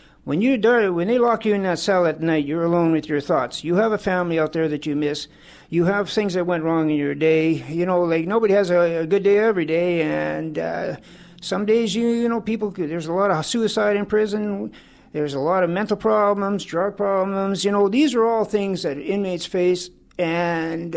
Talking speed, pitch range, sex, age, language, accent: 225 wpm, 160-210 Hz, male, 50-69, English, American